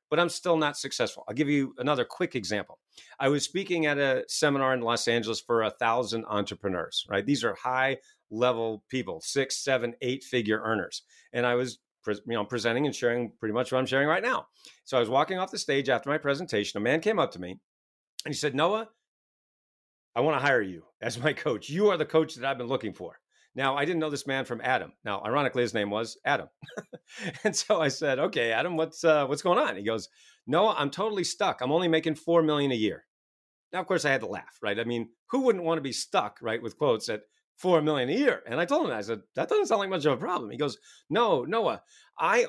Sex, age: male, 40-59